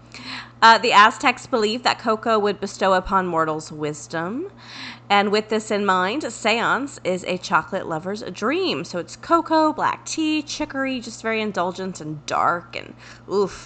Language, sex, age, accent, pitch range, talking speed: English, female, 30-49, American, 180-240 Hz, 160 wpm